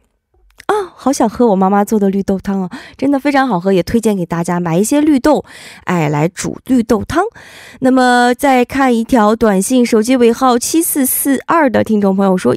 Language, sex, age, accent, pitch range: Korean, female, 20-39, Chinese, 180-260 Hz